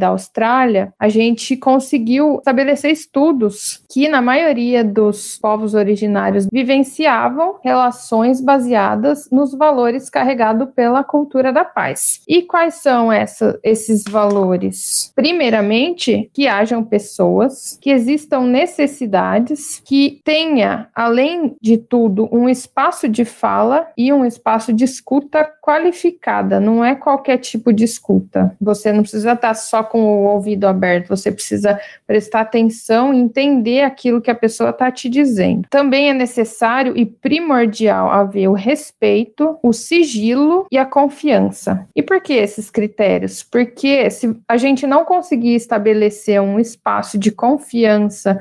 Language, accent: Portuguese, Brazilian